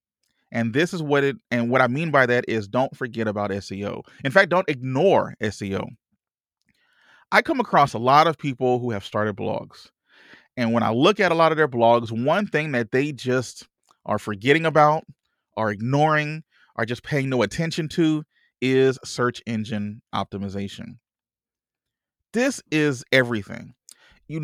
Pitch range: 120-160 Hz